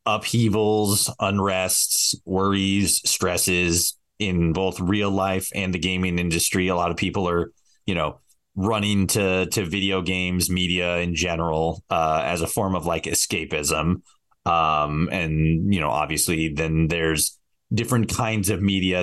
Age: 20-39